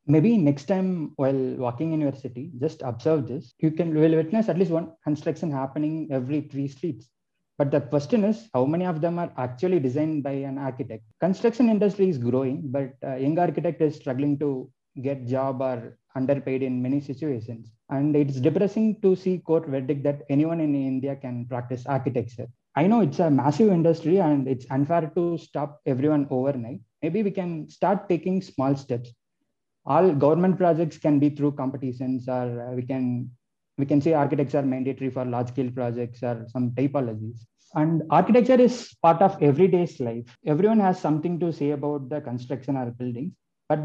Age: 20-39